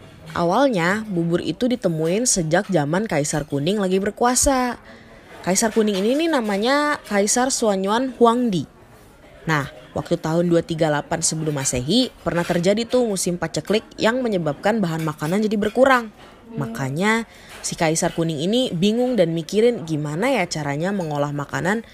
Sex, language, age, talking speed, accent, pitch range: female, English, 20-39, 130 wpm, Indonesian, 160-230 Hz